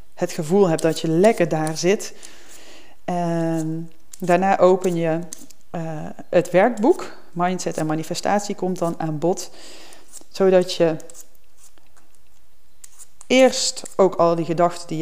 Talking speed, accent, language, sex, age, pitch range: 120 wpm, Dutch, Dutch, female, 40-59, 160-195 Hz